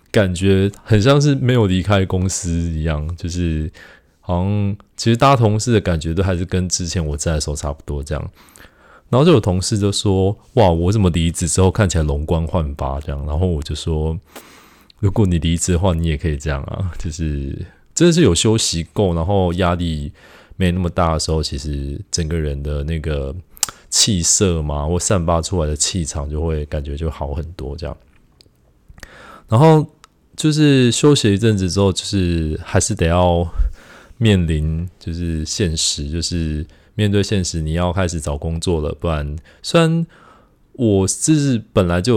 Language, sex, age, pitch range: Chinese, male, 20-39, 80-100 Hz